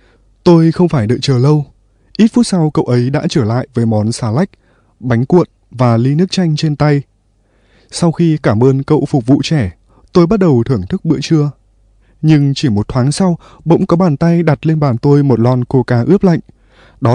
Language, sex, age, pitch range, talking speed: Vietnamese, male, 20-39, 120-160 Hz, 210 wpm